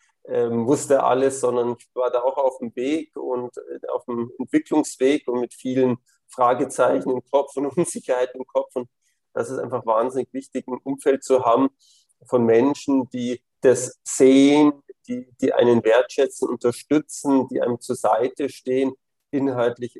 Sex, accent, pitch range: male, German, 120-135 Hz